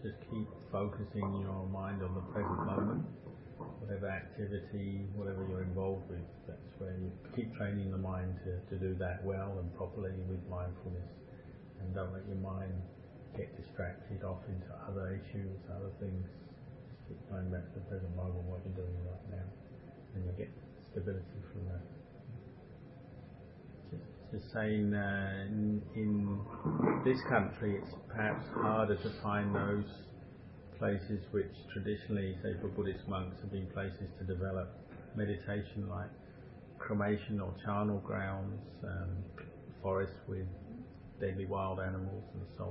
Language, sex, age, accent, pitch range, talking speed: English, male, 40-59, British, 95-105 Hz, 145 wpm